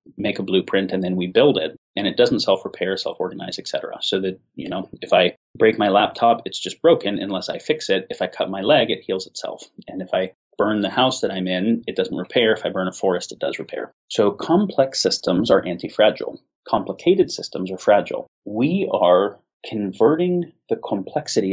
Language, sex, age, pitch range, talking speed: English, male, 30-49, 95-110 Hz, 210 wpm